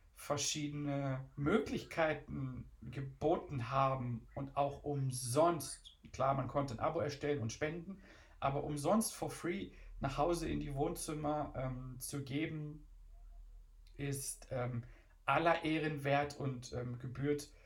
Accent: German